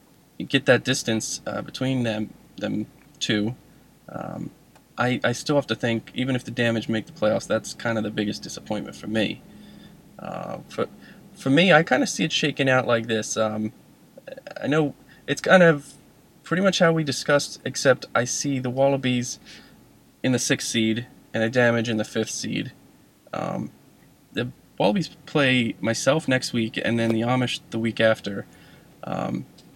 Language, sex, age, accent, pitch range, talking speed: English, male, 20-39, American, 115-140 Hz, 170 wpm